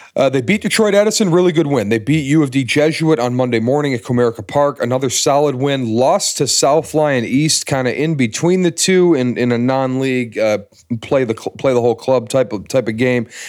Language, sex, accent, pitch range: English, male, American, 110-150 Hz